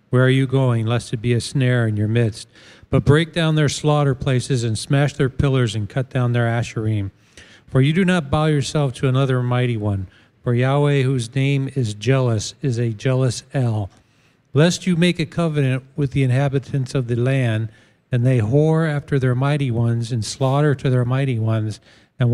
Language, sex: English, male